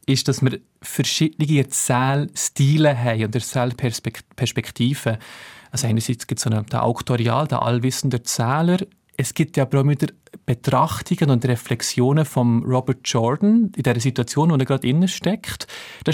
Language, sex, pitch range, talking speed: German, male, 125-155 Hz, 145 wpm